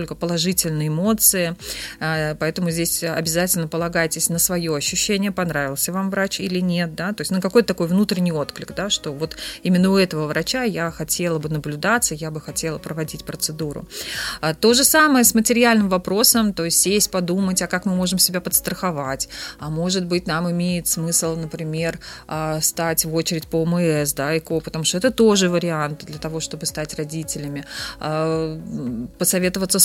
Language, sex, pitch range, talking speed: Russian, female, 165-205 Hz, 165 wpm